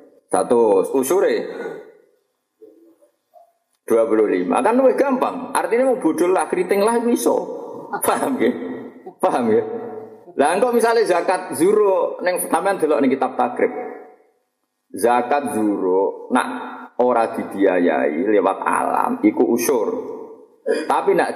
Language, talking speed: Indonesian, 110 wpm